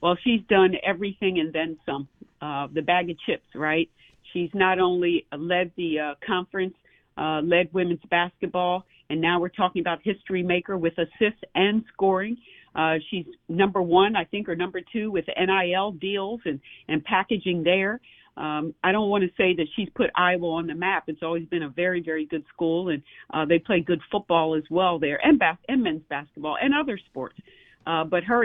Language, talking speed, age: English, 195 wpm, 50-69